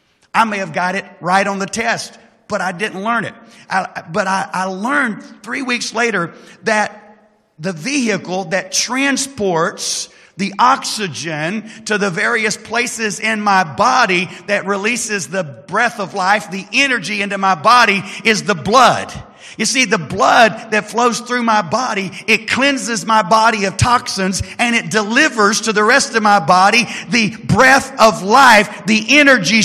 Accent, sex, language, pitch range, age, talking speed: American, male, English, 200-245 Hz, 40-59, 160 wpm